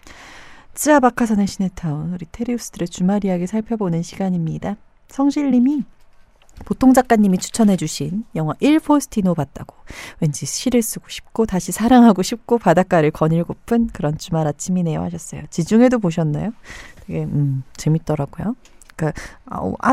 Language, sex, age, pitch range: Korean, female, 40-59, 165-220 Hz